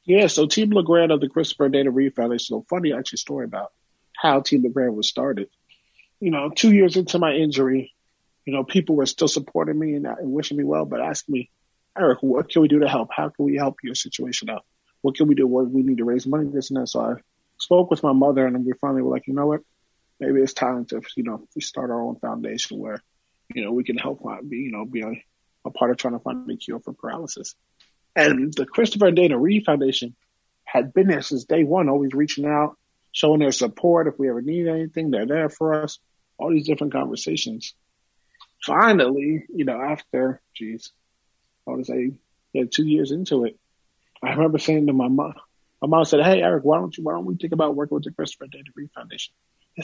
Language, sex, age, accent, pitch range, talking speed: English, male, 30-49, American, 130-160 Hz, 230 wpm